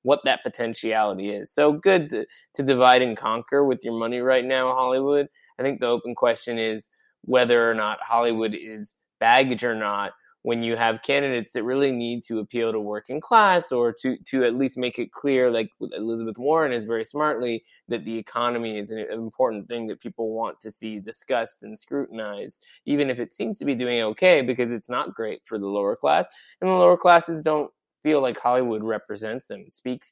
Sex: male